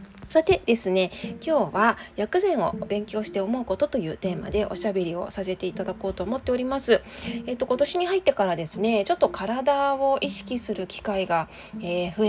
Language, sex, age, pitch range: Japanese, female, 20-39, 190-265 Hz